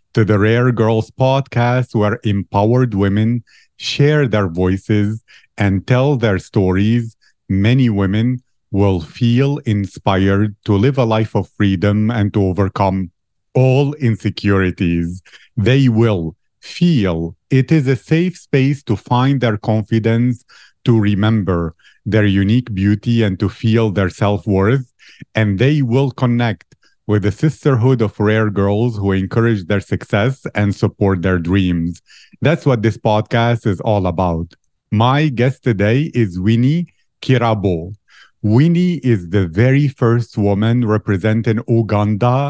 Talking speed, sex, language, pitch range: 130 wpm, male, English, 100-125 Hz